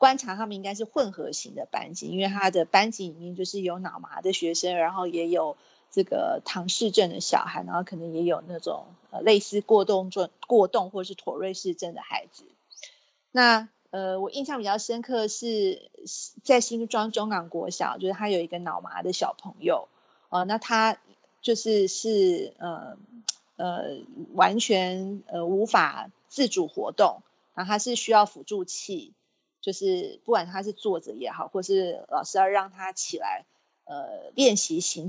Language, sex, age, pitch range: Chinese, female, 30-49, 180-235 Hz